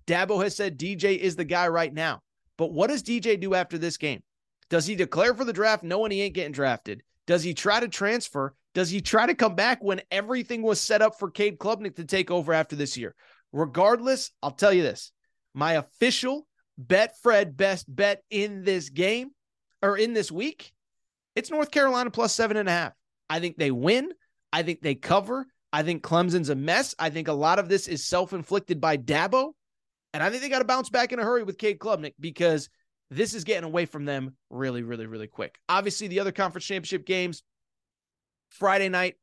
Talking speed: 200 wpm